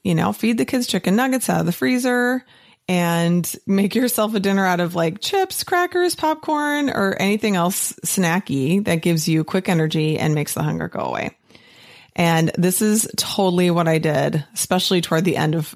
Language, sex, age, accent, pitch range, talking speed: English, female, 30-49, American, 155-200 Hz, 185 wpm